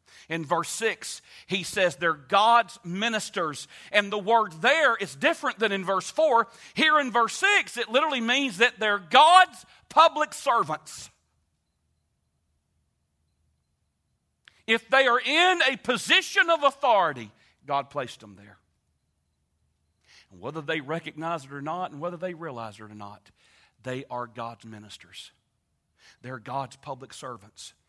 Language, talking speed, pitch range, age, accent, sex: English, 140 wpm, 115-180 Hz, 40-59, American, male